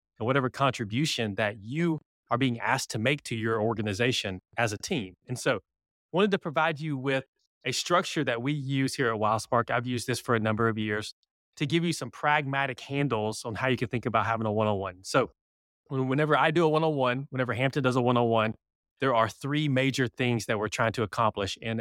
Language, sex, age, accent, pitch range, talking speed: English, male, 30-49, American, 110-140 Hz, 210 wpm